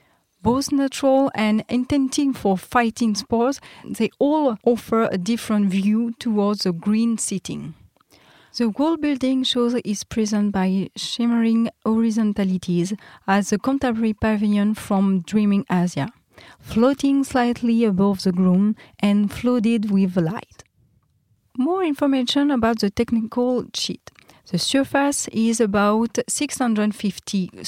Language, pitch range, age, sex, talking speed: French, 195-240 Hz, 30-49, female, 115 wpm